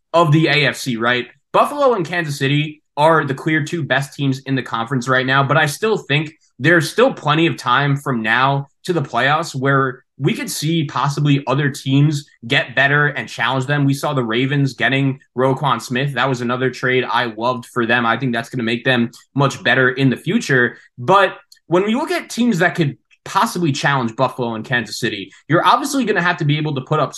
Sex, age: male, 20-39